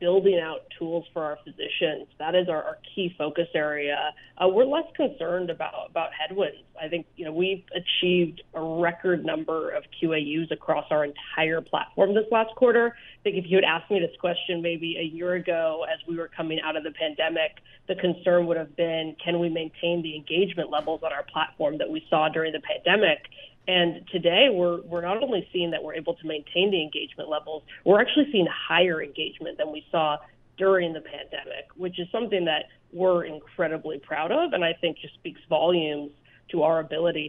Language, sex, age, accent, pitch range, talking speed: English, female, 30-49, American, 155-180 Hz, 195 wpm